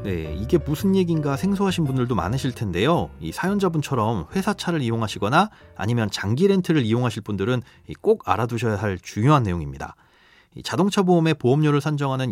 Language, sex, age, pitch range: Korean, male, 40-59, 110-170 Hz